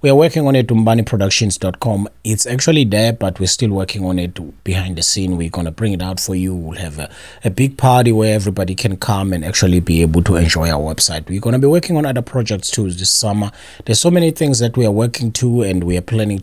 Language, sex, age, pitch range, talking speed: English, male, 30-49, 95-140 Hz, 240 wpm